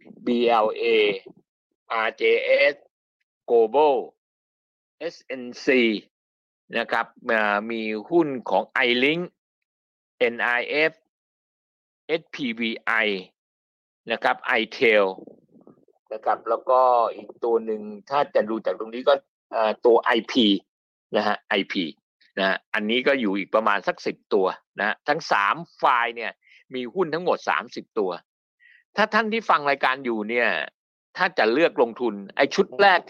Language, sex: Thai, male